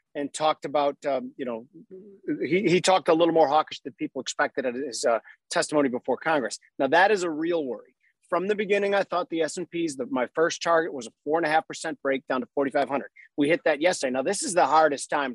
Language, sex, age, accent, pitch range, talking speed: English, male, 40-59, American, 140-180 Hz, 220 wpm